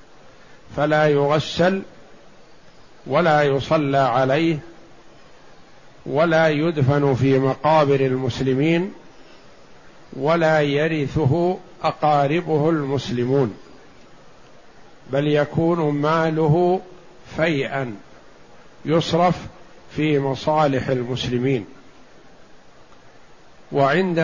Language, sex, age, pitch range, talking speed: Arabic, male, 50-69, 135-165 Hz, 55 wpm